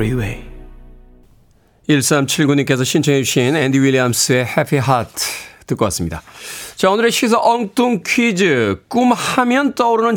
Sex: male